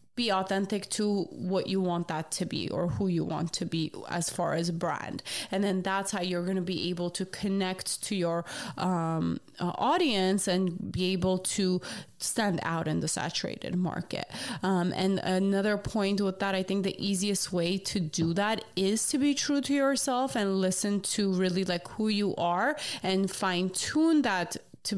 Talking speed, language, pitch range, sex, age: 185 wpm, English, 175-205 Hz, female, 20-39